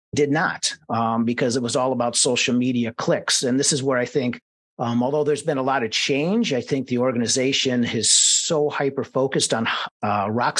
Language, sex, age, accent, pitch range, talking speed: English, male, 40-59, American, 120-155 Hz, 205 wpm